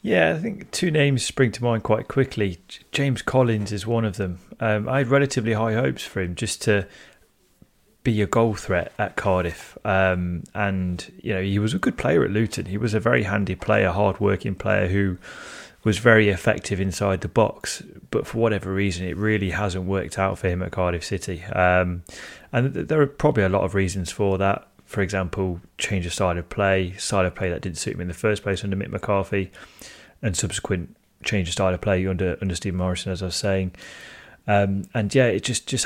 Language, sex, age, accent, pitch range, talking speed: English, male, 30-49, British, 90-110 Hz, 210 wpm